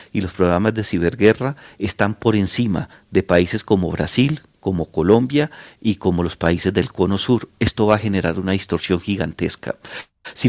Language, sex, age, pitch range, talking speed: Spanish, male, 40-59, 90-110 Hz, 165 wpm